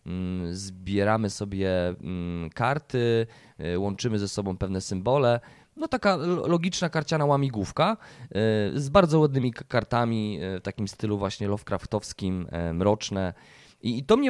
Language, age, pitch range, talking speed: Polish, 20-39, 105-150 Hz, 110 wpm